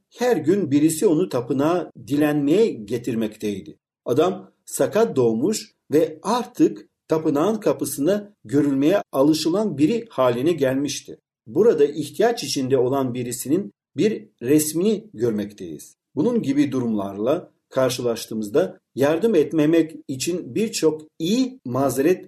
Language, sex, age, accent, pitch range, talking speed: Turkish, male, 50-69, native, 130-185 Hz, 100 wpm